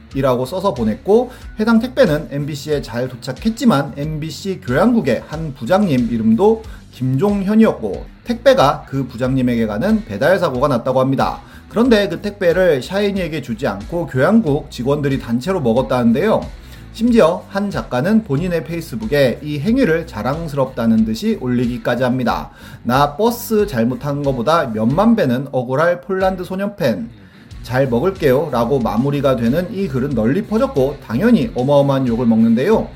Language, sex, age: Korean, male, 30-49